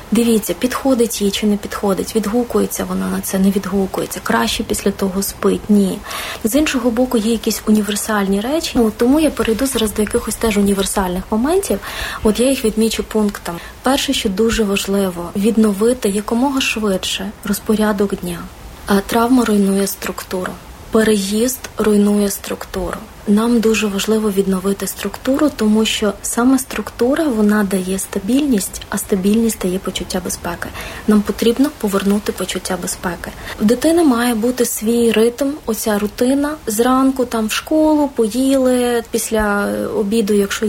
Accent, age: native, 20-39